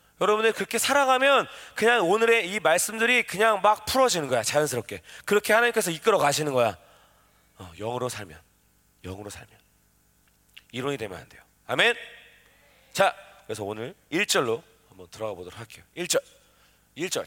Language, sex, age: Korean, male, 30-49